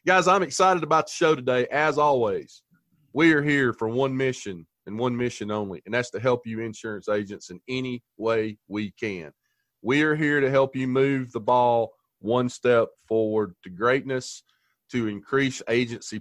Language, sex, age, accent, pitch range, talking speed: English, male, 30-49, American, 125-185 Hz, 180 wpm